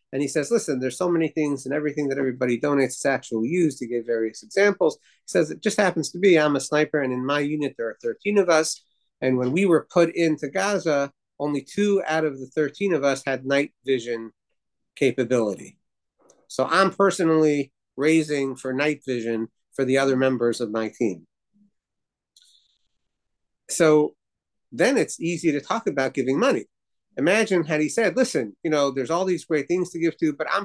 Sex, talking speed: male, 190 wpm